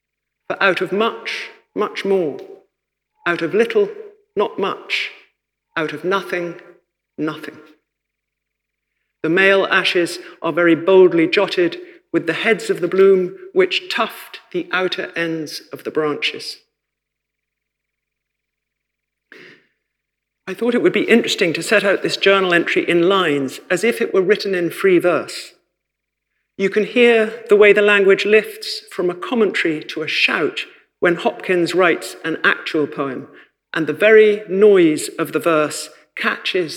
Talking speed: 140 wpm